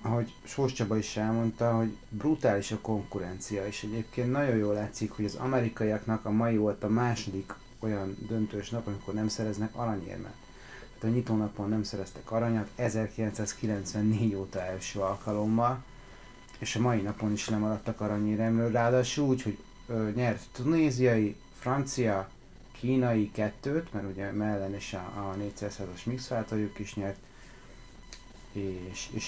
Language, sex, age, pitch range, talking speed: Hungarian, male, 30-49, 105-120 Hz, 130 wpm